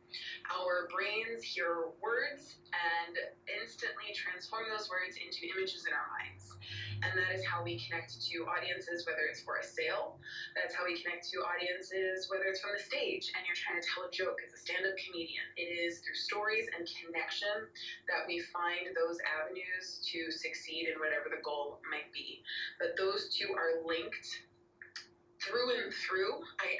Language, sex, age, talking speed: English, female, 20-39, 170 wpm